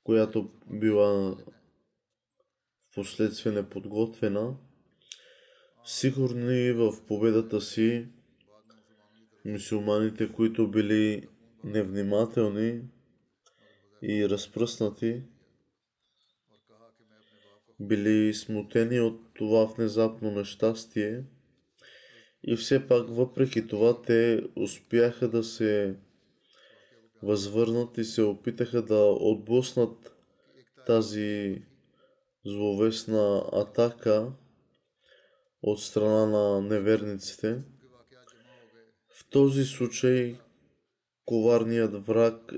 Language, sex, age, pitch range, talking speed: Bulgarian, male, 20-39, 105-115 Hz, 65 wpm